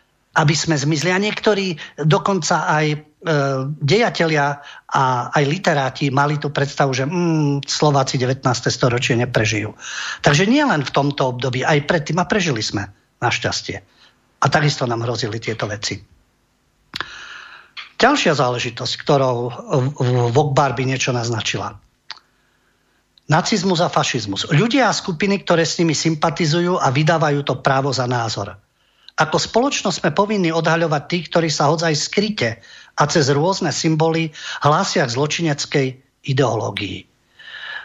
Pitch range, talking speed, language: 130-165 Hz, 125 wpm, English